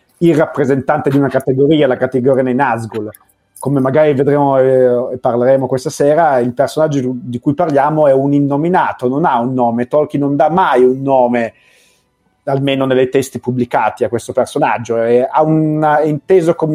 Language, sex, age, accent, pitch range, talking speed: Italian, male, 30-49, native, 130-160 Hz, 160 wpm